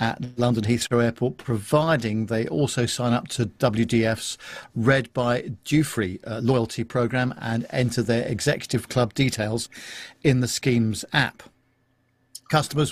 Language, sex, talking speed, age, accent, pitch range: English, male, 130 wpm, 50-69, British, 115-135 Hz